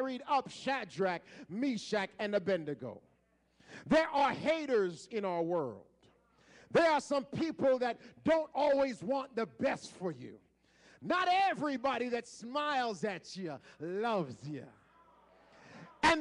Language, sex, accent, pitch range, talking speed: English, male, American, 250-355 Hz, 120 wpm